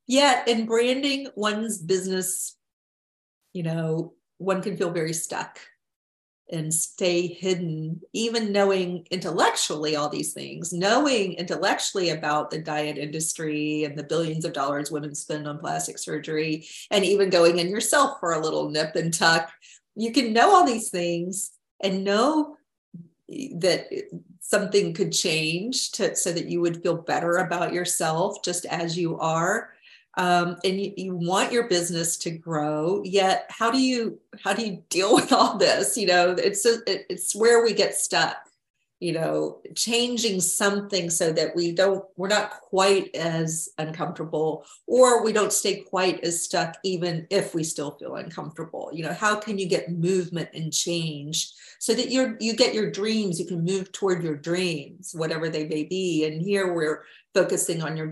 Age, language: 40-59, English